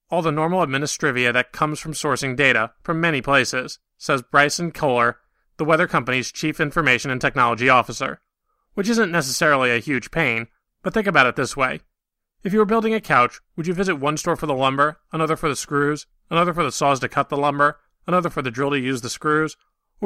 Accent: American